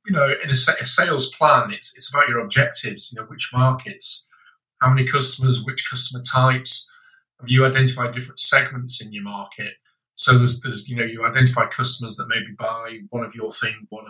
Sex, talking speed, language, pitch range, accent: male, 195 wpm, English, 115-130 Hz, British